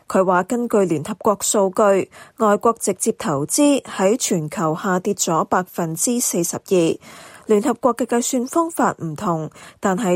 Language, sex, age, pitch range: Chinese, female, 20-39, 180-240 Hz